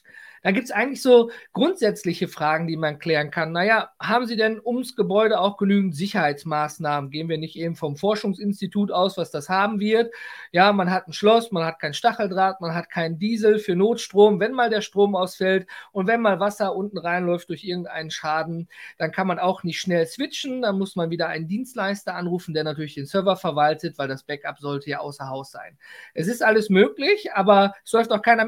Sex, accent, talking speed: male, German, 200 wpm